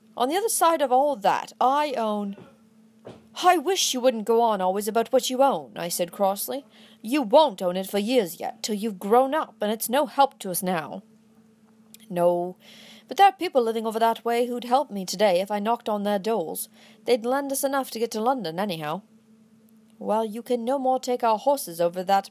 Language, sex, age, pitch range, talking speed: English, female, 40-59, 205-245 Hz, 210 wpm